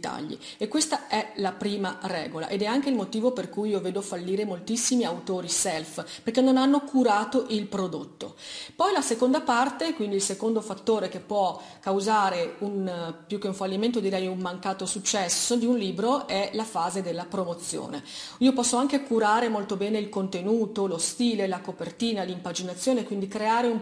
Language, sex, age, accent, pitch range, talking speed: Italian, female, 40-59, native, 190-245 Hz, 180 wpm